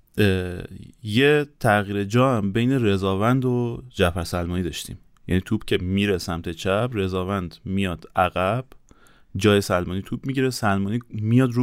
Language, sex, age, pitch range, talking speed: Persian, male, 30-49, 95-120 Hz, 135 wpm